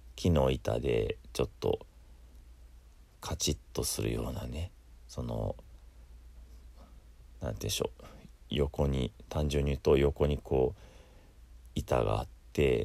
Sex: male